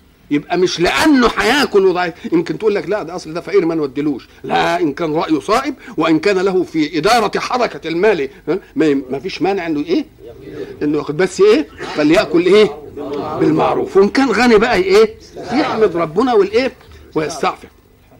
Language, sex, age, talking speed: Arabic, male, 50-69, 160 wpm